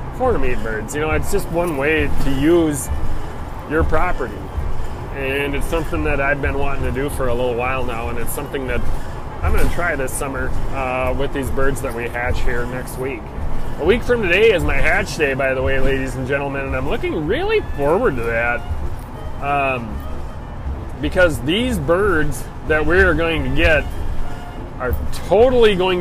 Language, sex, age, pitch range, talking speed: English, male, 30-49, 110-145 Hz, 180 wpm